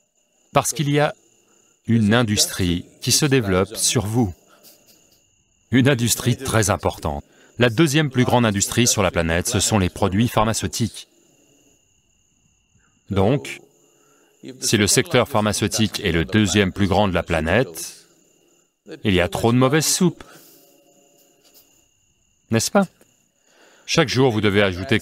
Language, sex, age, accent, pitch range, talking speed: English, male, 40-59, French, 95-135 Hz, 130 wpm